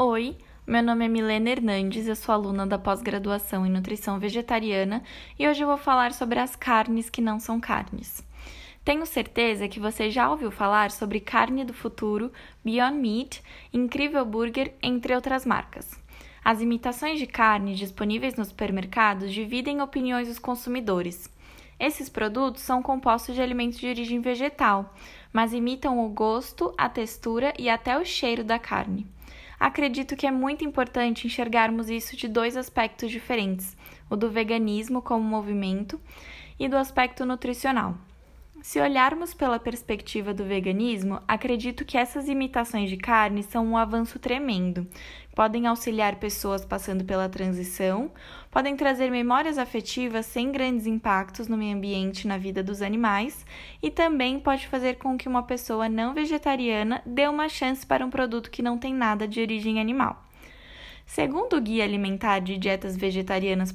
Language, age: Portuguese, 10-29